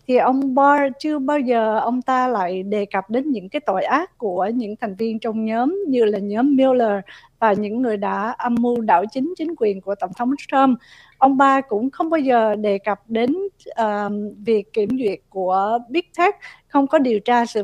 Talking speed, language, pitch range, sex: 210 wpm, Vietnamese, 220-270 Hz, female